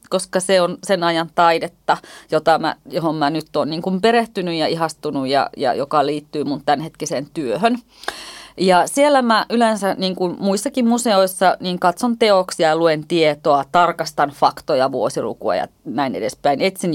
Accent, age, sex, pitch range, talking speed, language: native, 30-49, female, 160-230 Hz, 150 wpm, Finnish